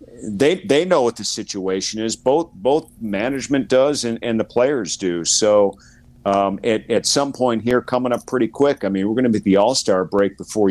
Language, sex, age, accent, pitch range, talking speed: English, male, 50-69, American, 100-125 Hz, 215 wpm